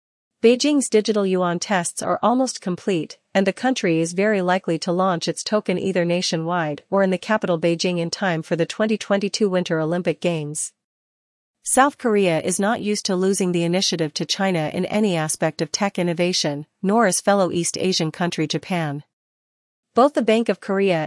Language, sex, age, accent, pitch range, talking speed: English, female, 40-59, American, 170-205 Hz, 175 wpm